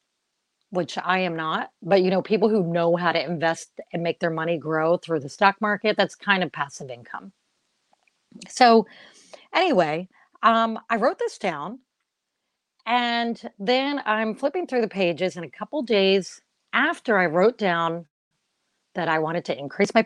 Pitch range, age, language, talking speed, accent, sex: 170-230 Hz, 40-59, English, 165 wpm, American, female